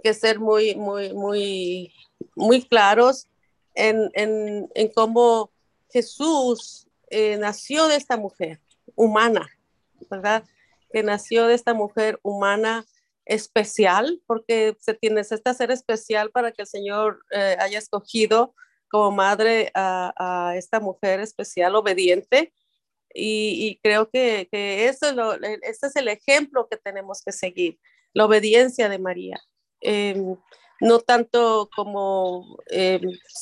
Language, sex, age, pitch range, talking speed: English, female, 40-59, 205-235 Hz, 125 wpm